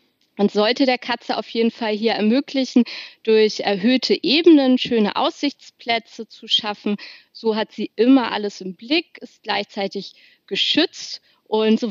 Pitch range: 200-255 Hz